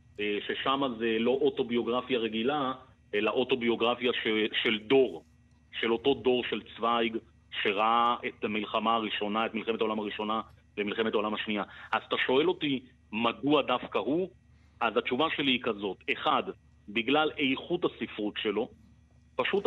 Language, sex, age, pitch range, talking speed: Hebrew, male, 40-59, 115-145 Hz, 130 wpm